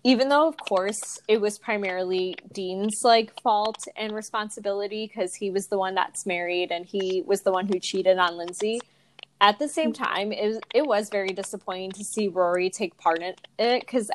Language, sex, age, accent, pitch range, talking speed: English, female, 20-39, American, 185-230 Hz, 195 wpm